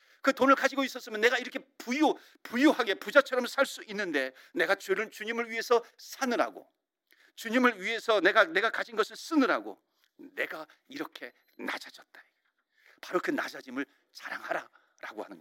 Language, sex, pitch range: Korean, male, 220-330 Hz